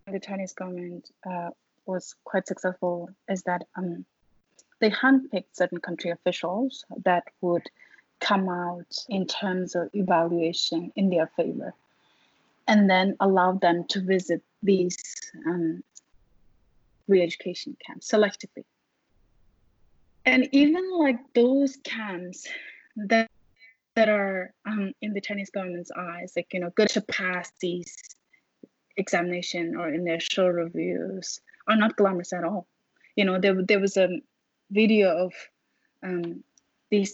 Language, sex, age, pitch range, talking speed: English, female, 30-49, 180-215 Hz, 130 wpm